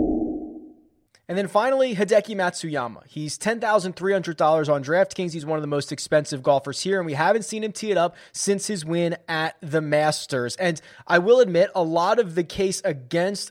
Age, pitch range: 20-39, 160-195 Hz